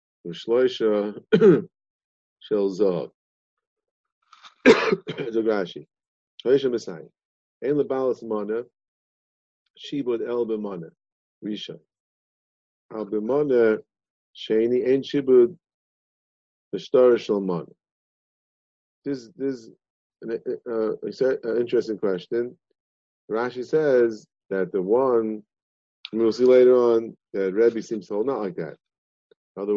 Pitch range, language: 100-135 Hz, English